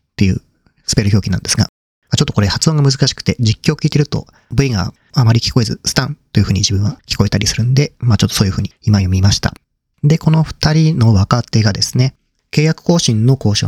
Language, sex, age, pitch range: Japanese, male, 40-59, 100-140 Hz